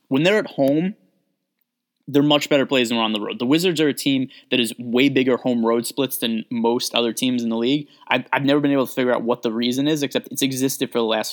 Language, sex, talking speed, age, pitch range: English, male, 260 wpm, 20-39, 115-145 Hz